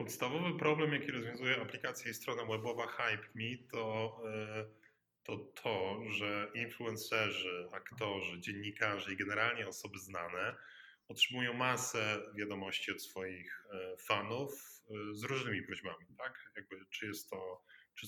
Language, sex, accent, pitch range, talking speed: Polish, male, native, 100-120 Hz, 105 wpm